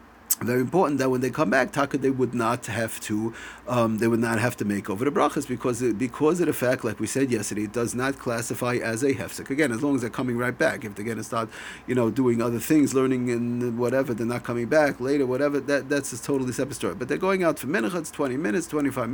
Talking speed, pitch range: 255 wpm, 115-150 Hz